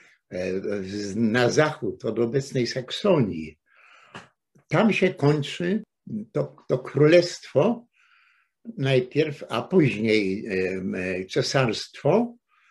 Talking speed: 70 wpm